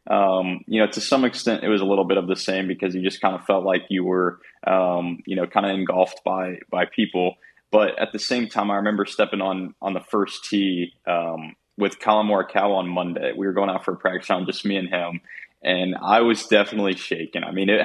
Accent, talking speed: American, 240 wpm